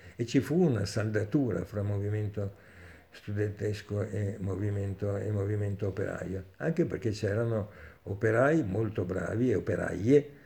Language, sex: Italian, male